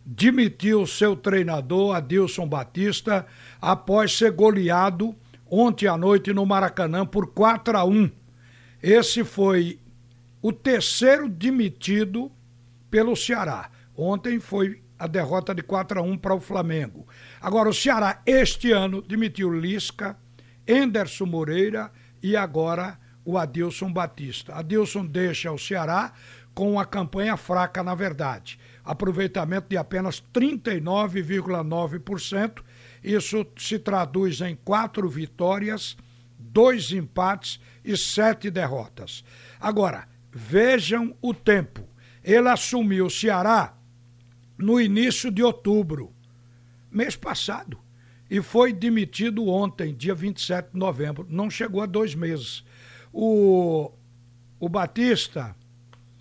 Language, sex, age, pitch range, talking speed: Portuguese, male, 60-79, 135-210 Hz, 110 wpm